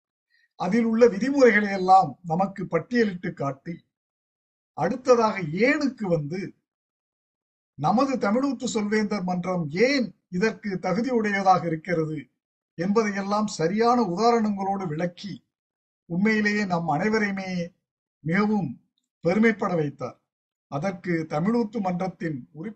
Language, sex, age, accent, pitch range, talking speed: Tamil, male, 50-69, native, 165-225 Hz, 85 wpm